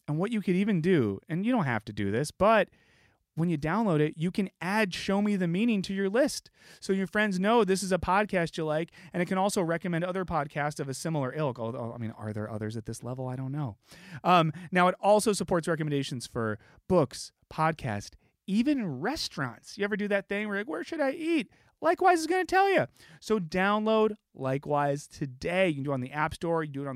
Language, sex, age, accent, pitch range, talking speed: English, male, 30-49, American, 115-185 Hz, 240 wpm